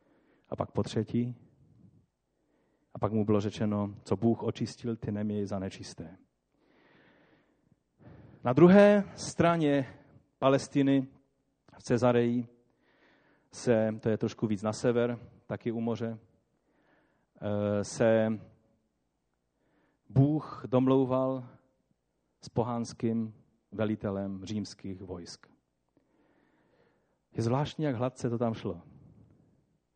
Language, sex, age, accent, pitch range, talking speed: Czech, male, 40-59, native, 95-130 Hz, 95 wpm